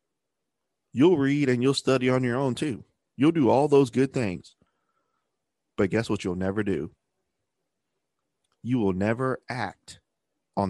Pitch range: 95-125 Hz